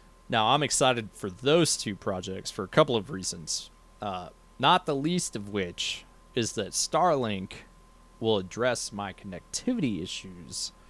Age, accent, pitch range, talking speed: 30-49, American, 100-125 Hz, 145 wpm